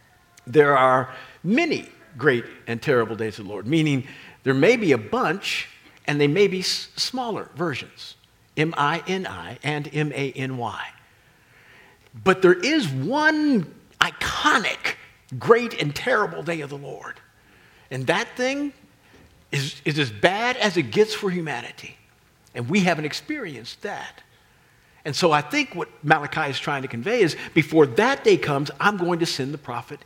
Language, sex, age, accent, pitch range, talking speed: English, male, 50-69, American, 135-210 Hz, 150 wpm